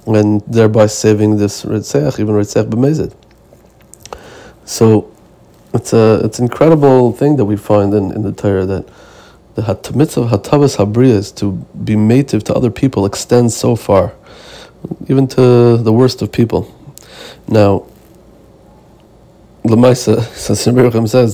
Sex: male